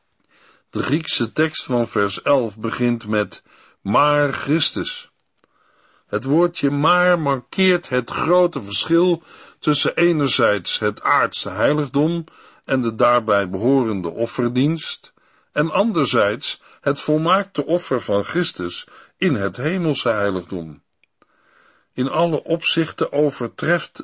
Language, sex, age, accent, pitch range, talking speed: Dutch, male, 60-79, Dutch, 120-160 Hz, 105 wpm